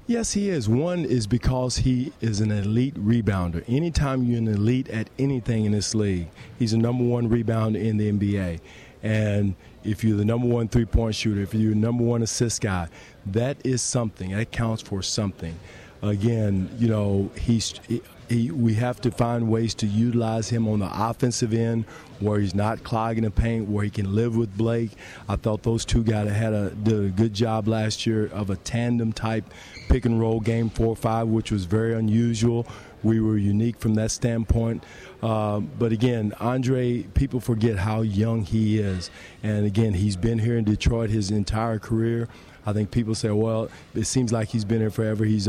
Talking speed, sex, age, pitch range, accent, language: 185 wpm, male, 40-59, 105-115 Hz, American, English